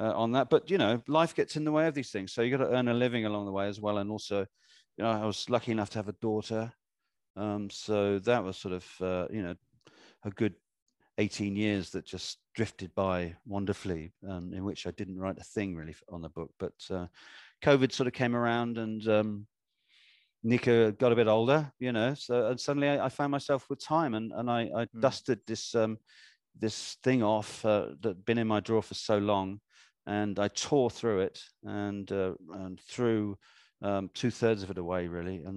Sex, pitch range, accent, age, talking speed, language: male, 95-120 Hz, British, 40-59, 220 wpm, English